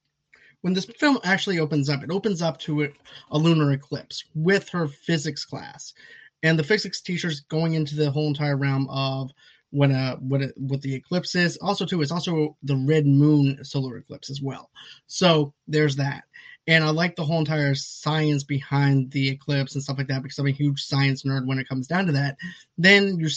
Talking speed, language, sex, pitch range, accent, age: 200 wpm, English, male, 135-160 Hz, American, 20-39